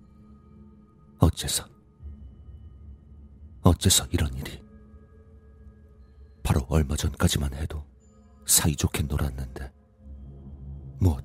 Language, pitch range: Korean, 70-80 Hz